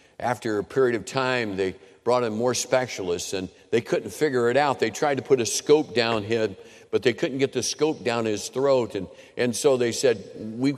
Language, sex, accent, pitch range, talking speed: English, male, American, 90-125 Hz, 215 wpm